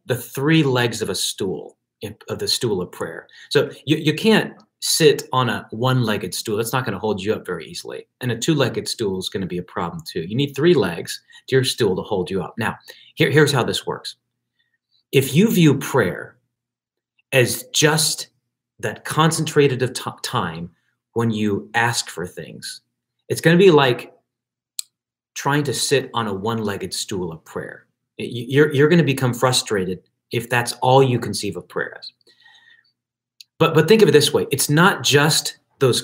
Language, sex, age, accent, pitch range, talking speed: English, male, 30-49, American, 120-170 Hz, 185 wpm